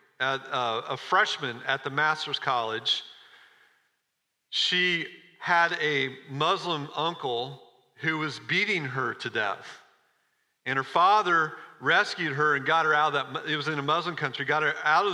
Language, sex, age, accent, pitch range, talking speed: English, male, 40-59, American, 140-195 Hz, 155 wpm